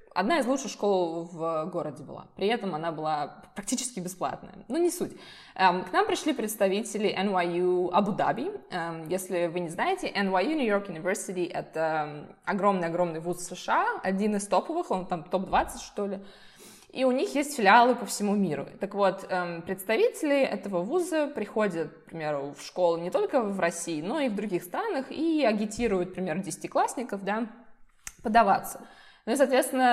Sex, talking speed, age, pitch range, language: female, 160 wpm, 20-39, 185-255 Hz, Russian